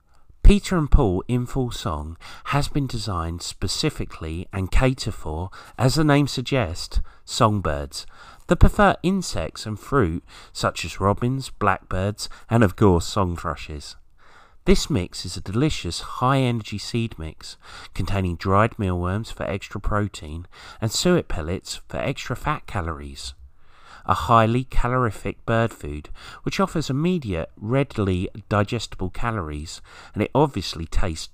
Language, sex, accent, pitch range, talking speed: English, male, British, 85-120 Hz, 130 wpm